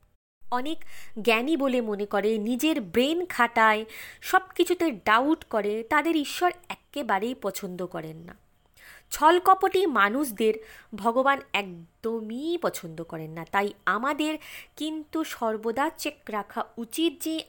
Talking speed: 115 wpm